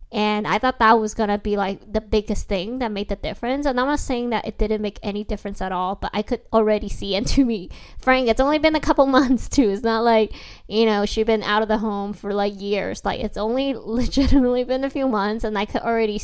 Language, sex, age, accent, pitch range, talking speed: English, female, 10-29, American, 200-230 Hz, 255 wpm